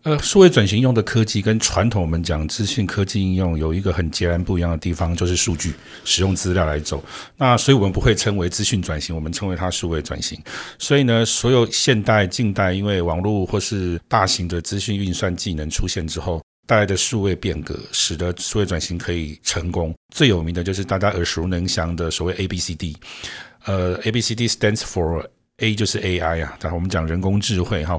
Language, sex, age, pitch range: Chinese, male, 50-69, 85-105 Hz